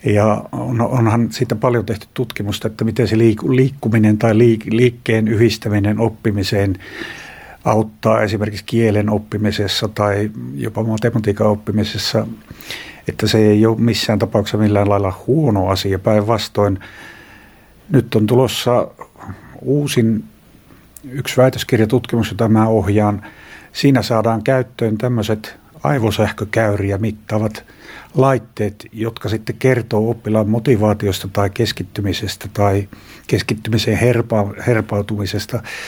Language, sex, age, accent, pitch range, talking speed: Finnish, male, 60-79, native, 105-115 Hz, 100 wpm